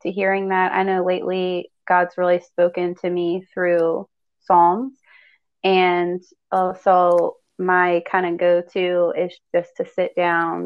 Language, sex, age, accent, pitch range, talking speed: English, female, 20-39, American, 175-195 Hz, 135 wpm